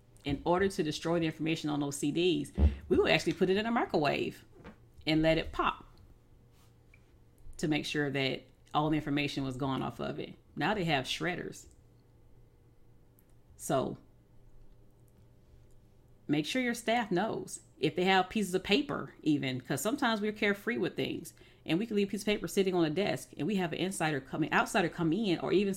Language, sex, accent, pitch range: English, female, American, 120-180 Hz